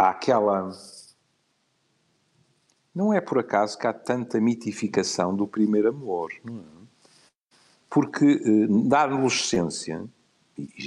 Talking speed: 110 wpm